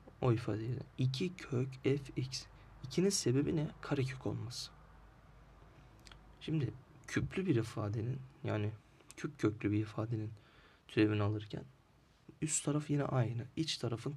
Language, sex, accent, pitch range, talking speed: Turkish, male, native, 120-150 Hz, 115 wpm